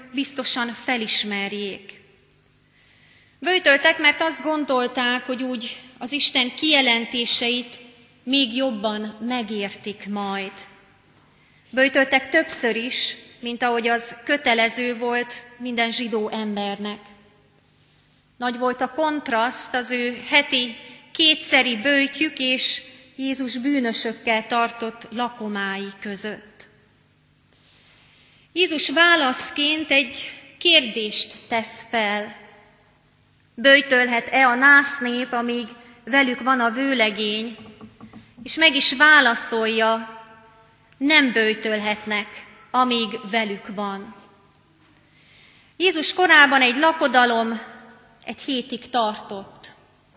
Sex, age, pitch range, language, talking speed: female, 30-49, 225-275 Hz, Hungarian, 85 wpm